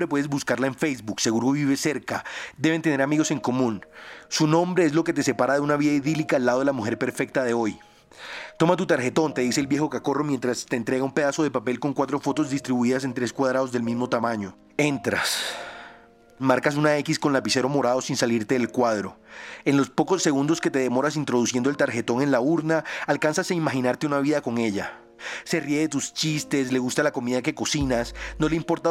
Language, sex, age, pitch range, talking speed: Spanish, male, 30-49, 125-155 Hz, 210 wpm